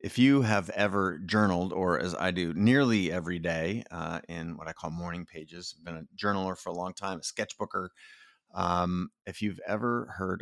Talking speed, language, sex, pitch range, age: 190 wpm, English, male, 90-105 Hz, 30-49